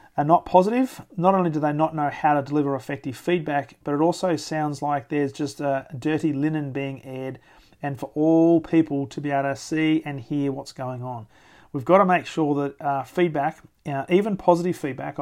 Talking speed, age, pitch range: 205 wpm, 40-59, 140-165 Hz